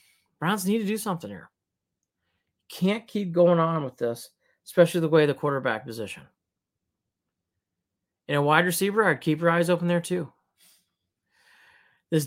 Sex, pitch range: male, 135-180 Hz